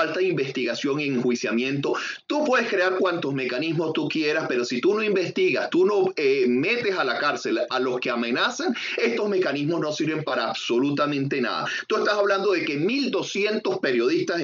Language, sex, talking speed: Spanish, male, 170 wpm